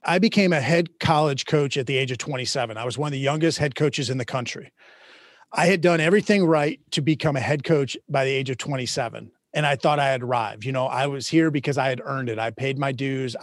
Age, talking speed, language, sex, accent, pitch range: 30-49, 255 wpm, English, male, American, 130-160 Hz